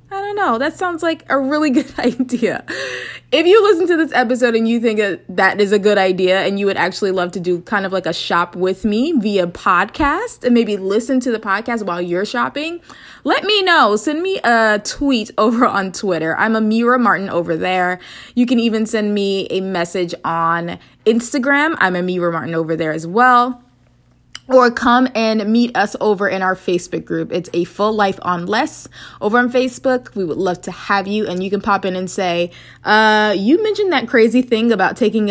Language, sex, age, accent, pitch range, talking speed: English, female, 20-39, American, 190-255 Hz, 200 wpm